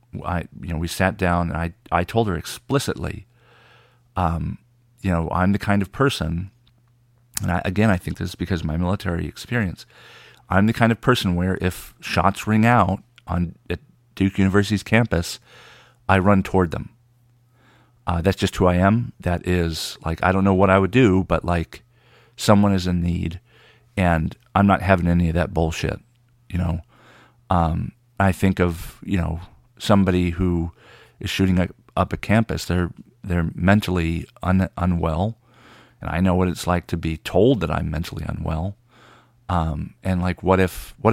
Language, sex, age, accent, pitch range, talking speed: English, male, 40-59, American, 85-110 Hz, 170 wpm